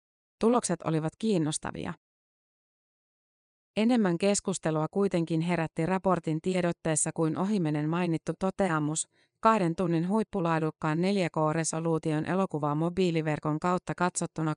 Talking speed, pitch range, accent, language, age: 85 wpm, 155-185 Hz, native, Finnish, 30-49